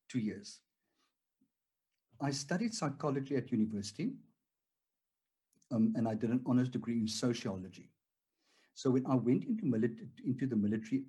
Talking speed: 135 wpm